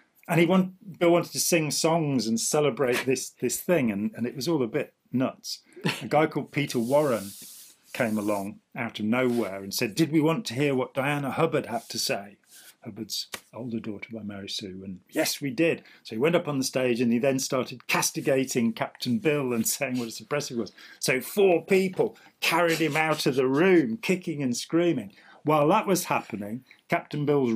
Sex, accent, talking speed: male, British, 200 wpm